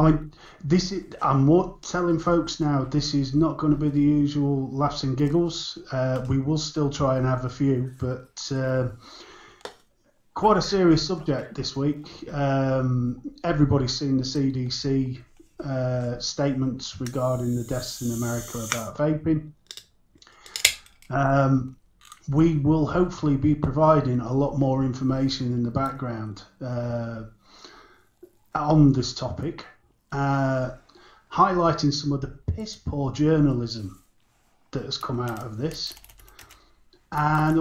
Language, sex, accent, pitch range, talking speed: English, male, British, 125-150 Hz, 125 wpm